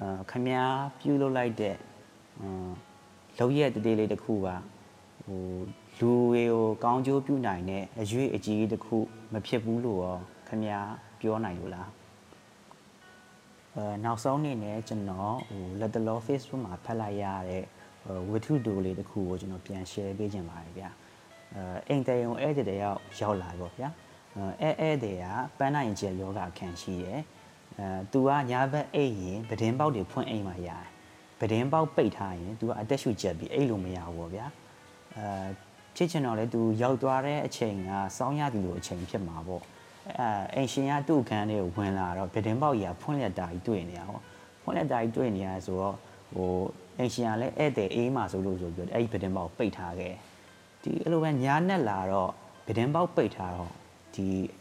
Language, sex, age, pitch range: English, male, 30-49, 95-125 Hz